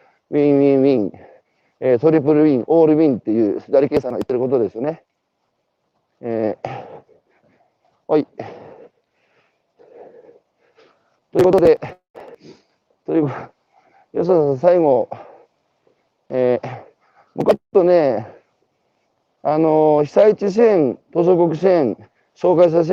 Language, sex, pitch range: Japanese, male, 140-185 Hz